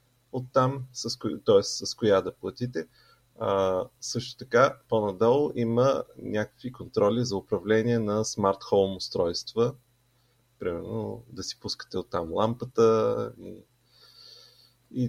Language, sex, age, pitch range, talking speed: Bulgarian, male, 30-49, 105-125 Hz, 115 wpm